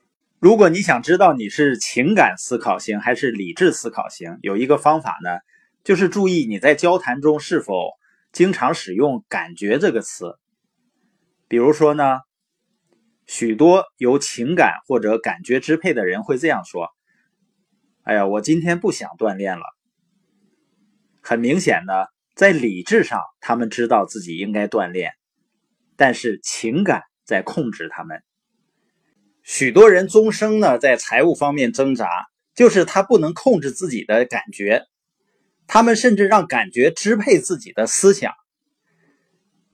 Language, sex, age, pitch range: Chinese, male, 20-39, 135-210 Hz